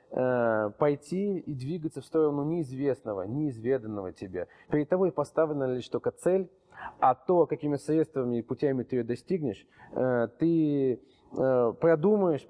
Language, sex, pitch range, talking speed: Russian, male, 130-170 Hz, 120 wpm